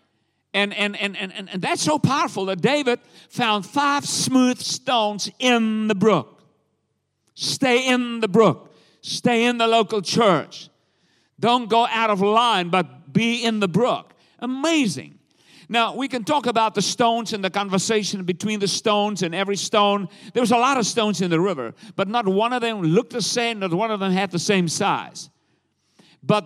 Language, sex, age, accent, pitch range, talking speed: English, male, 50-69, American, 190-240 Hz, 180 wpm